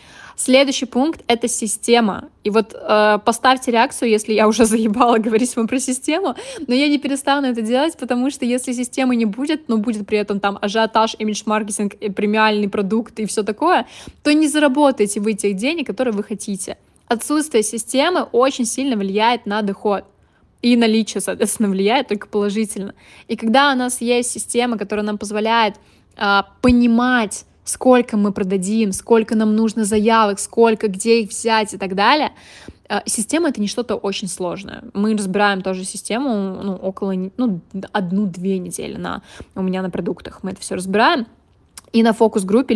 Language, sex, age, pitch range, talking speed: Russian, female, 20-39, 205-245 Hz, 160 wpm